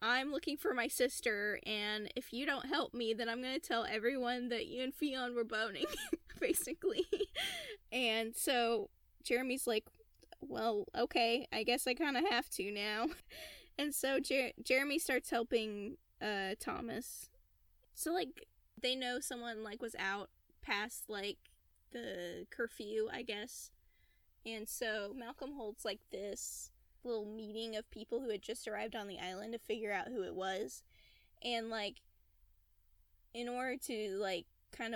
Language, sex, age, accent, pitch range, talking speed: English, female, 10-29, American, 205-250 Hz, 155 wpm